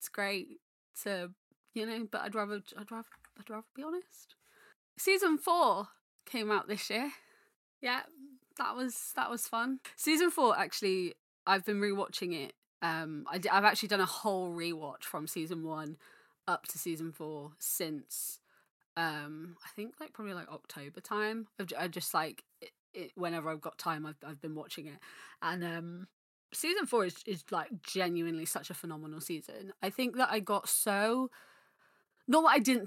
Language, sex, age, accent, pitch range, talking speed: English, female, 20-39, British, 170-225 Hz, 170 wpm